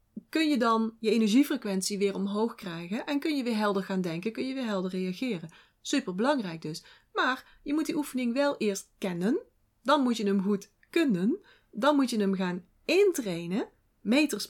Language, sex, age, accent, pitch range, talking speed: Dutch, female, 40-59, Dutch, 205-275 Hz, 180 wpm